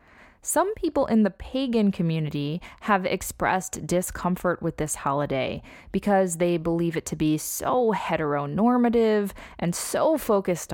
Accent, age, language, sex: American, 20-39, English, female